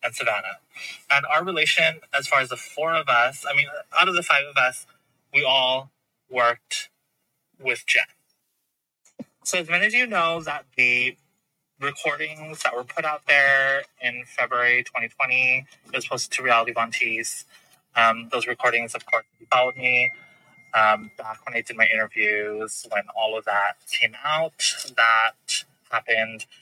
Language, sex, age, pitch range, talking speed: English, male, 20-39, 115-145 Hz, 160 wpm